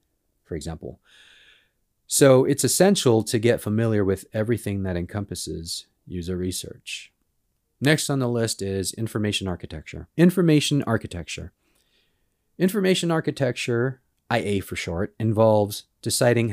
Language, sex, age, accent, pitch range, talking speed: English, male, 40-59, American, 95-120 Hz, 110 wpm